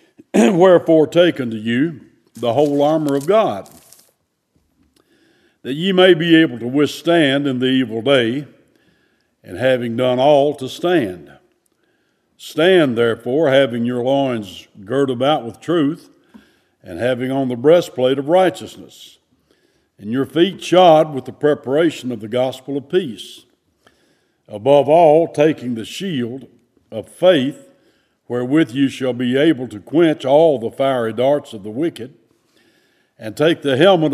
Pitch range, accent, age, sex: 125-155 Hz, American, 60-79, male